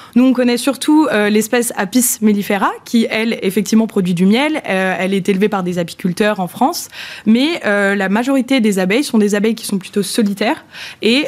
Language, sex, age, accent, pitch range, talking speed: French, female, 20-39, French, 205-260 Hz, 195 wpm